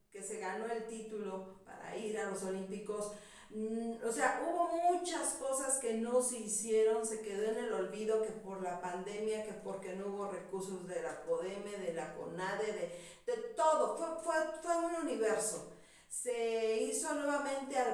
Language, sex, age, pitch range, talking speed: Spanish, female, 40-59, 205-245 Hz, 170 wpm